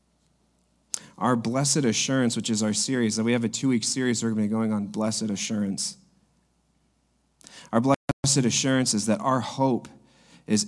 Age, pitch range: 30-49, 105-145 Hz